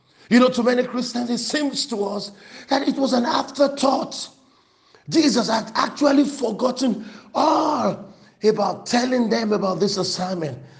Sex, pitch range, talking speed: male, 190-275 Hz, 140 wpm